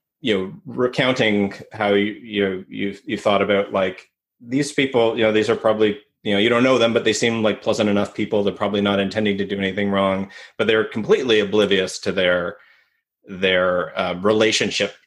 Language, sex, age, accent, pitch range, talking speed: English, male, 30-49, American, 95-110 Hz, 190 wpm